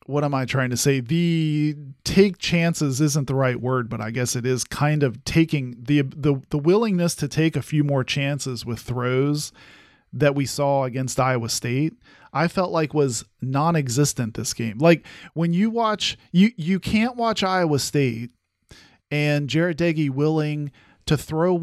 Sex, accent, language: male, American, English